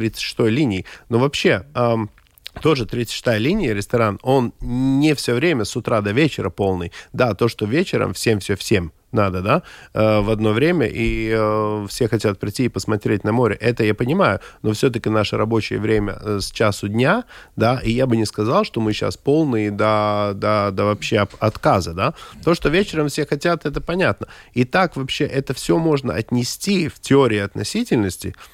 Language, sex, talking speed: Russian, male, 175 wpm